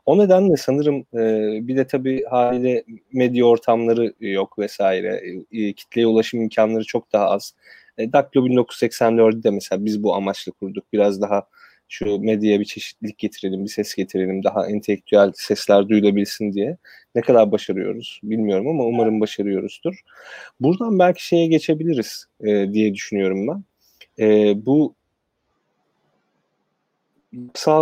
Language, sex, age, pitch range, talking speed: Turkish, male, 30-49, 105-135 Hz, 130 wpm